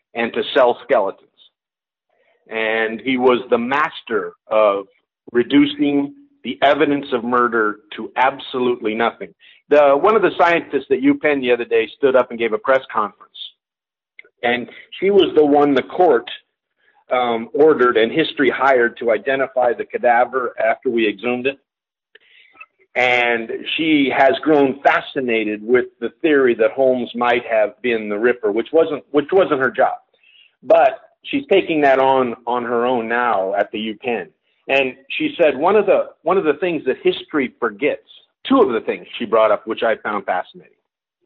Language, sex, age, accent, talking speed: English, male, 50-69, American, 165 wpm